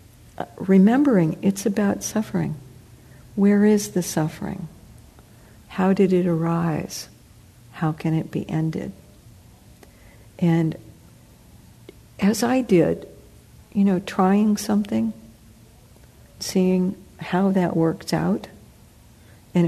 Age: 60-79